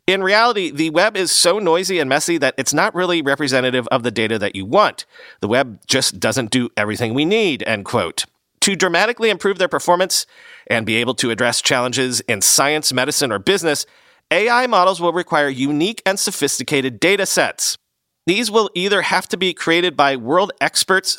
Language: English